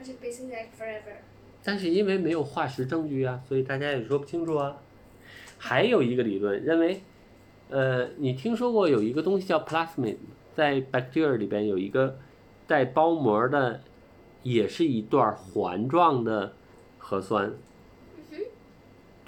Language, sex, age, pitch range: Chinese, male, 50-69, 110-180 Hz